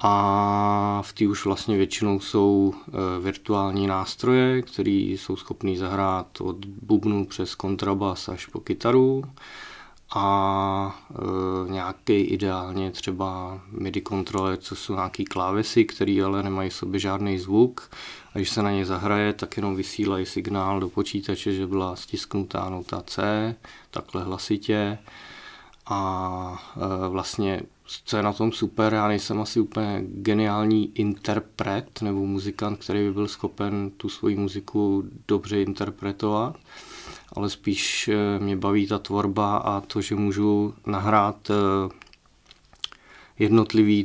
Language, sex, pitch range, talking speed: Czech, male, 95-105 Hz, 125 wpm